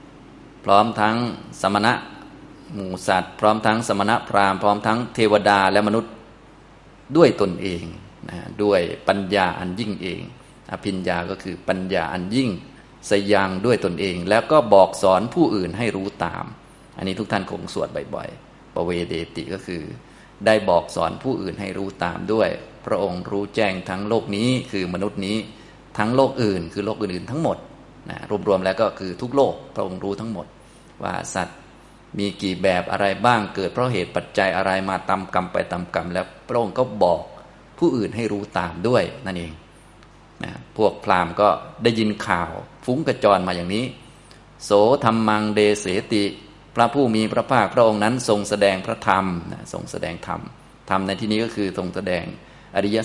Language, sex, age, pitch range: Thai, male, 20-39, 95-110 Hz